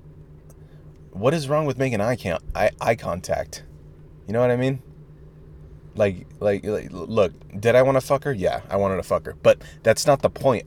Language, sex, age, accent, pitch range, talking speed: English, male, 20-39, American, 95-145 Hz, 200 wpm